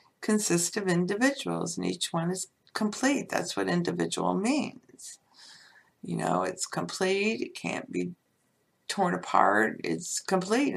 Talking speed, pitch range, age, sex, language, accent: 130 wpm, 170-245 Hz, 60-79, female, English, American